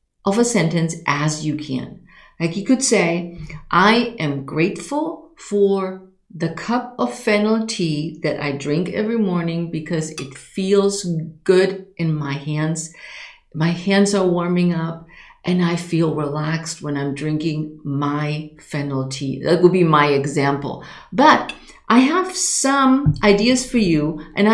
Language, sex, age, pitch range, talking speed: English, female, 50-69, 155-210 Hz, 145 wpm